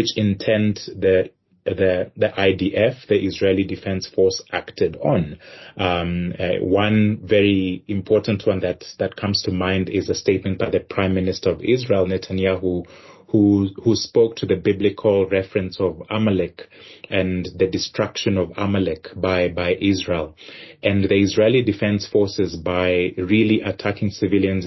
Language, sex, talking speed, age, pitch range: English, male, 145 wpm, 30-49, 95-110 Hz